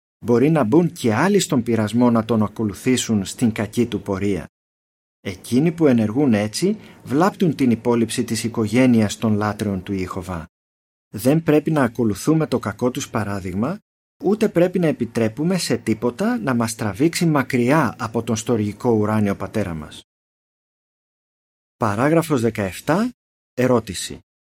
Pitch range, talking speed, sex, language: 110-145 Hz, 130 wpm, male, Greek